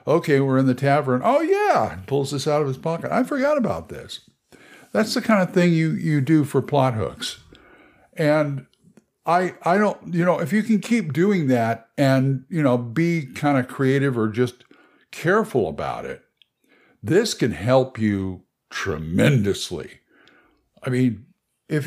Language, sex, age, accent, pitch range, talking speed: English, male, 60-79, American, 125-175 Hz, 165 wpm